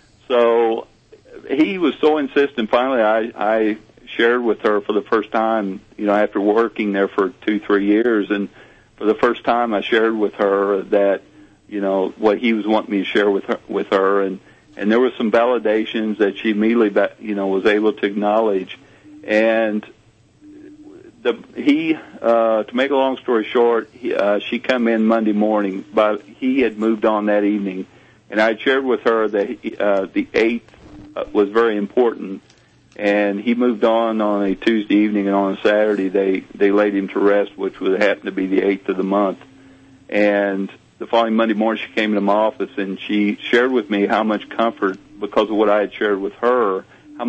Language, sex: English, male